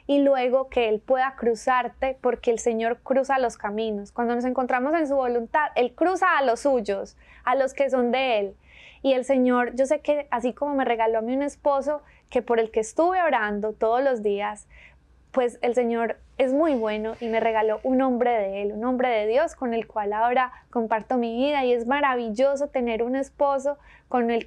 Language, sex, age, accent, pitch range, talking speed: Spanish, female, 20-39, Colombian, 225-260 Hz, 205 wpm